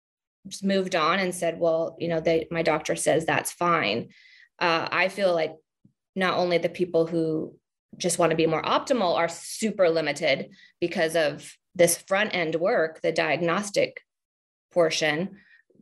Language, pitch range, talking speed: English, 165-185 Hz, 150 wpm